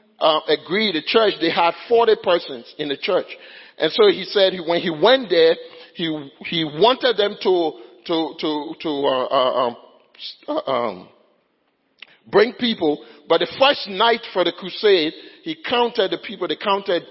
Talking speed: 160 wpm